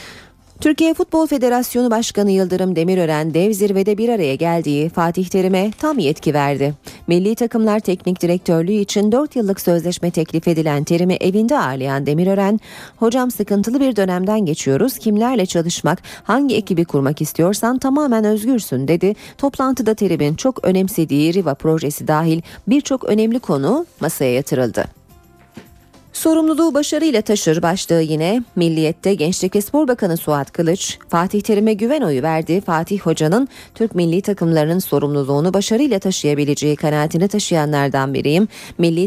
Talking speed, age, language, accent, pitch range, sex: 130 wpm, 40-59, Turkish, native, 160-220 Hz, female